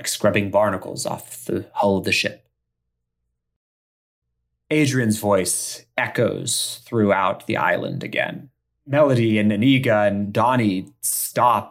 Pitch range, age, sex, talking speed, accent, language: 90-120 Hz, 30-49, male, 110 wpm, American, English